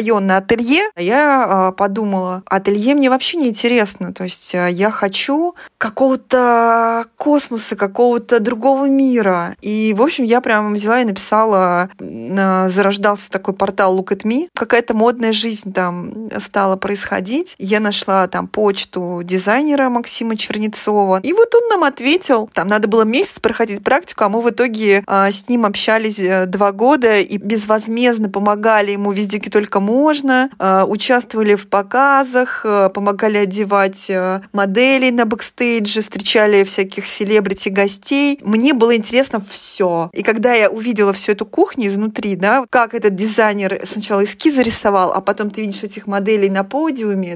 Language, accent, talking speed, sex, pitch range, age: Russian, native, 145 wpm, female, 200-245 Hz, 20-39